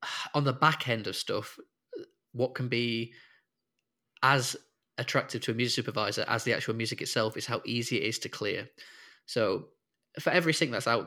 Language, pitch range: English, 110-130 Hz